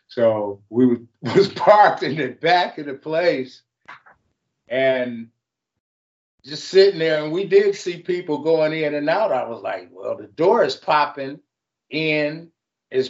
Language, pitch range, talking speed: English, 125-165 Hz, 150 wpm